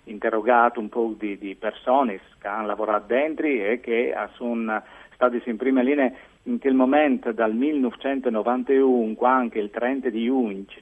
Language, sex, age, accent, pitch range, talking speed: Italian, male, 50-69, native, 110-140 Hz, 150 wpm